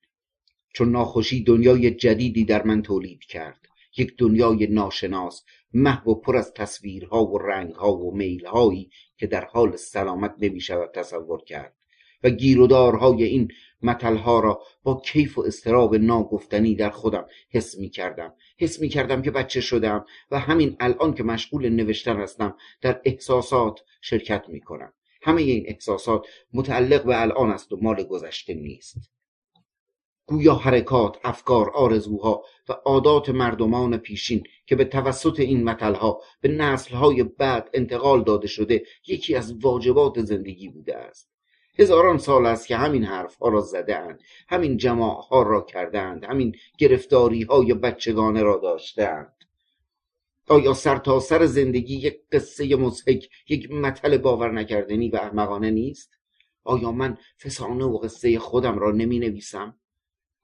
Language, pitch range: Persian, 110-135 Hz